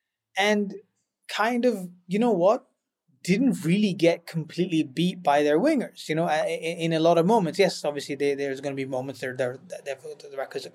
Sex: male